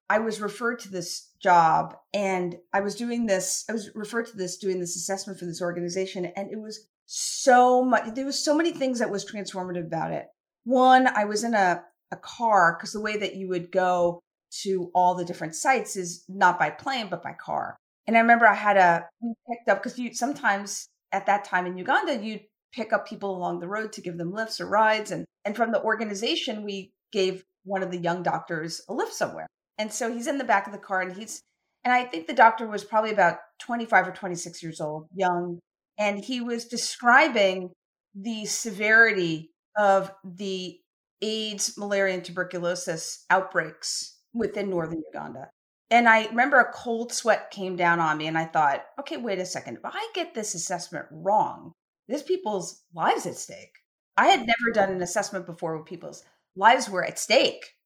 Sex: female